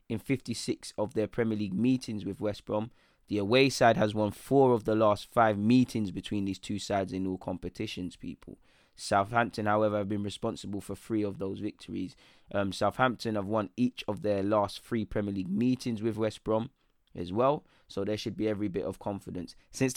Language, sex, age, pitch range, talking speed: English, male, 20-39, 100-115 Hz, 195 wpm